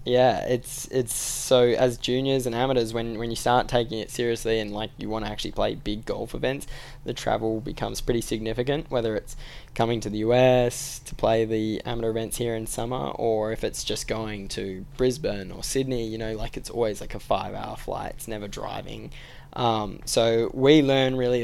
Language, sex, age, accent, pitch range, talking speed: English, male, 10-29, Australian, 110-125 Hz, 195 wpm